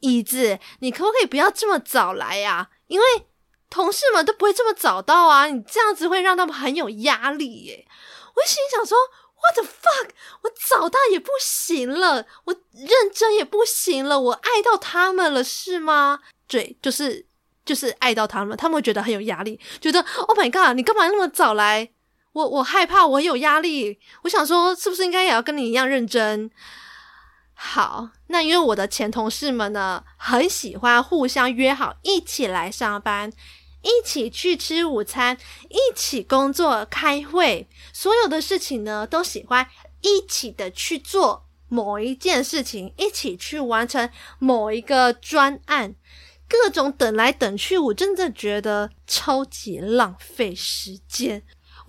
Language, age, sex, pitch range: Chinese, 20-39, female, 230-370 Hz